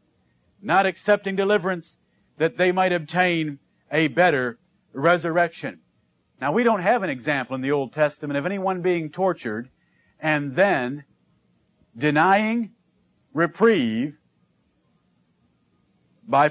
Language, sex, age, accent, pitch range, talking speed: English, male, 50-69, American, 140-185 Hz, 105 wpm